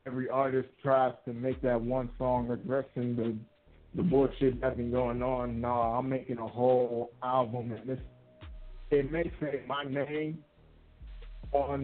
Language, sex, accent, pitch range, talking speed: English, male, American, 115-140 Hz, 140 wpm